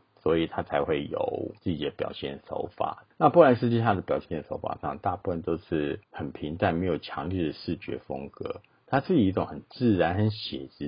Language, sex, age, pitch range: Chinese, male, 50-69, 85-110 Hz